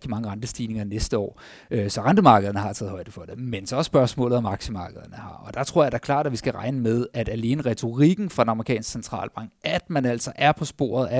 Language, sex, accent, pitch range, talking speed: Danish, male, native, 115-140 Hz, 235 wpm